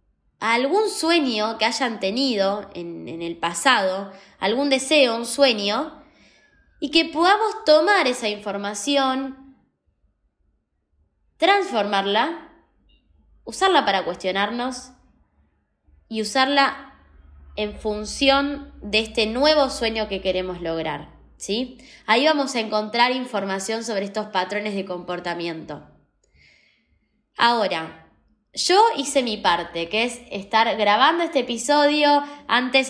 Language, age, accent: Spanish, 20-39, Argentinian